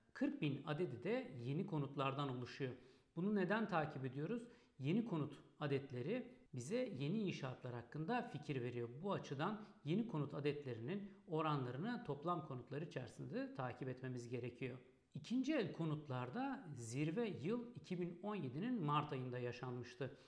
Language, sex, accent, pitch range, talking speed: Turkish, male, native, 130-190 Hz, 120 wpm